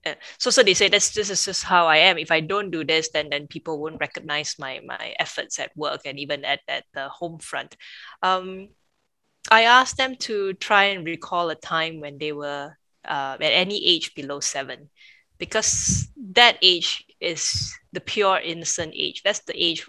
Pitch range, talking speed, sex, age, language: 155-200 Hz, 190 wpm, female, 20-39, English